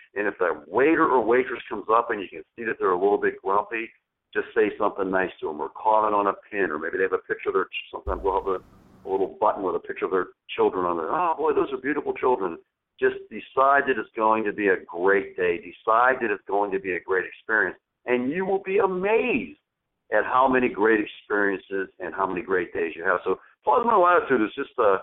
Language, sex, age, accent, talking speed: English, male, 50-69, American, 240 wpm